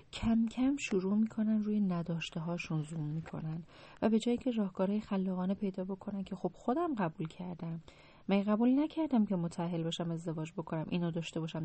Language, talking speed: Persian, 170 wpm